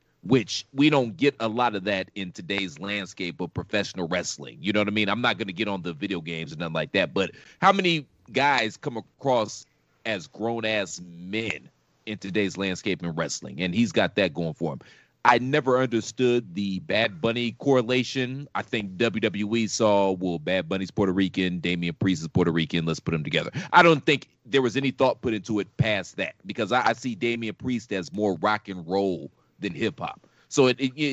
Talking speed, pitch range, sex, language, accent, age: 205 wpm, 95-120 Hz, male, English, American, 30-49